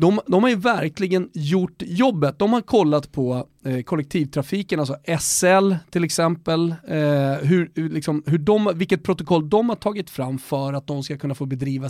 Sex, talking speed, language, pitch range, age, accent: male, 180 wpm, Swedish, 140-195 Hz, 30-49, native